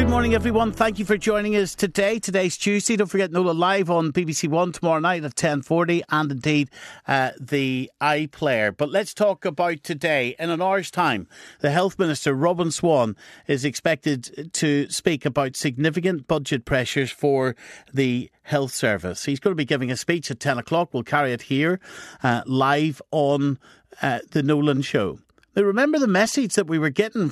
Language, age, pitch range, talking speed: English, 50-69, 145-200 Hz, 180 wpm